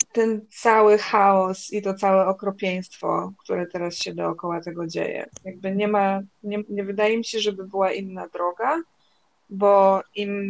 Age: 20-39